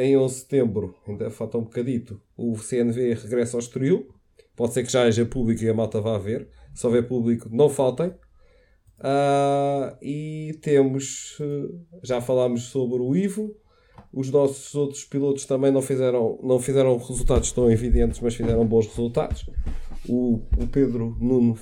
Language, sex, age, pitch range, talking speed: Portuguese, male, 20-39, 110-140 Hz, 160 wpm